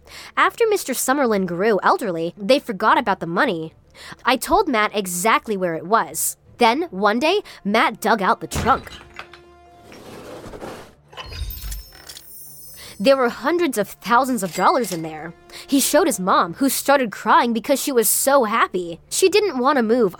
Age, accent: 20-39, American